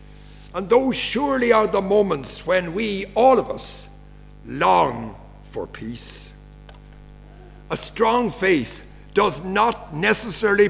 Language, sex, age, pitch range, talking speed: English, male, 60-79, 160-210 Hz, 110 wpm